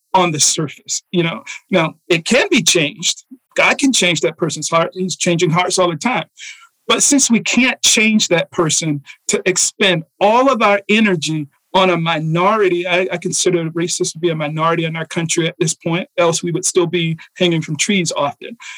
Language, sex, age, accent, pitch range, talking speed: English, male, 40-59, American, 170-205 Hz, 195 wpm